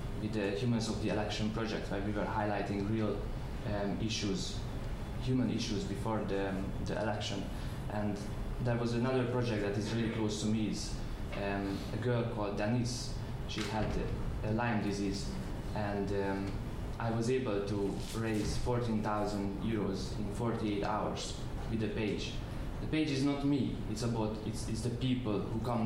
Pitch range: 100-115 Hz